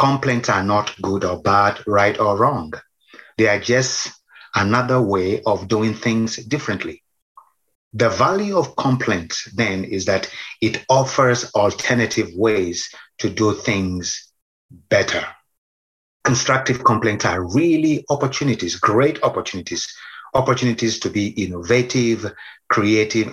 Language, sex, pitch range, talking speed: English, male, 100-125 Hz, 115 wpm